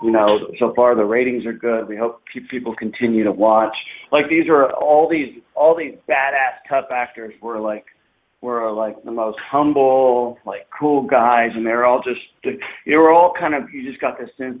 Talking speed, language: 200 wpm, English